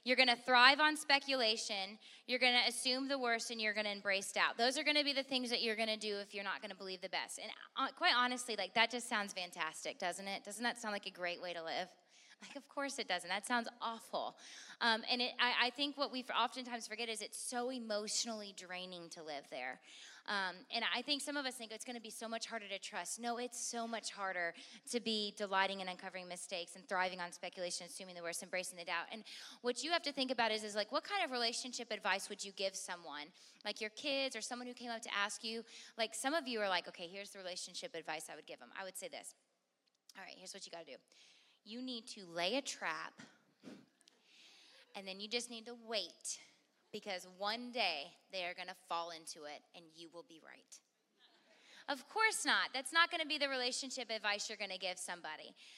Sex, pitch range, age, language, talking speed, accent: female, 195-250 Hz, 20-39, English, 240 wpm, American